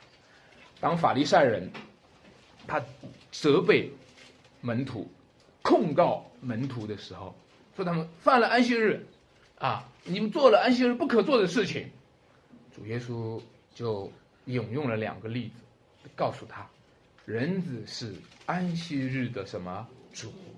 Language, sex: Chinese, male